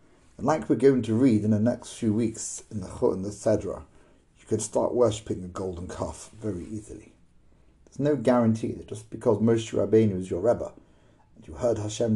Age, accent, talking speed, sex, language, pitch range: 40-59, British, 195 wpm, male, English, 105-140 Hz